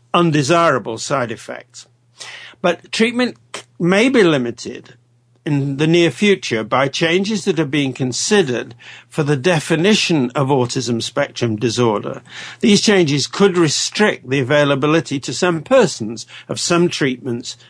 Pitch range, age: 125-175 Hz, 60-79